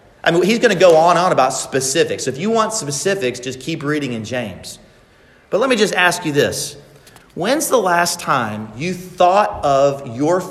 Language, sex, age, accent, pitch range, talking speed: English, male, 30-49, American, 135-200 Hz, 205 wpm